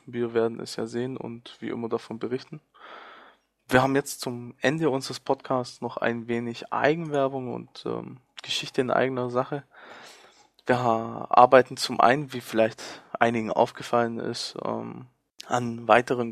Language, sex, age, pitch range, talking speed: German, male, 20-39, 115-130 Hz, 145 wpm